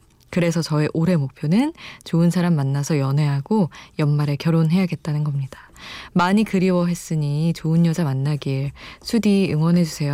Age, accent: 20-39, native